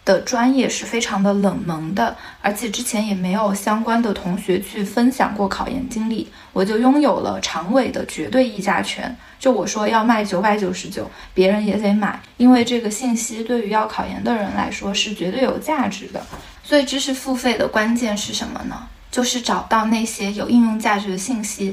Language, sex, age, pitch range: Chinese, female, 20-39, 200-255 Hz